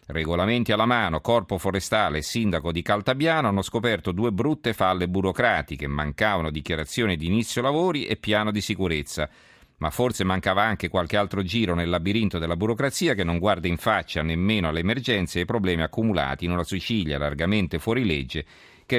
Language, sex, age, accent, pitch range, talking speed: Italian, male, 40-59, native, 80-105 Hz, 170 wpm